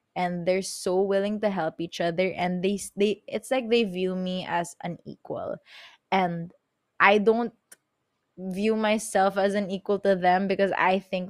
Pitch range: 170-195 Hz